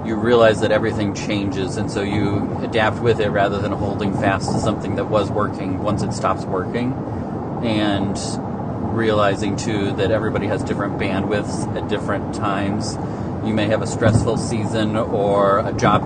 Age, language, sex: 30-49, English, male